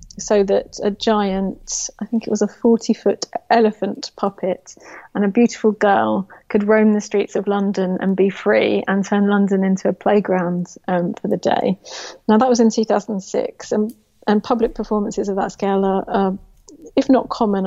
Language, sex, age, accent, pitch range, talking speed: English, female, 30-49, British, 195-225 Hz, 175 wpm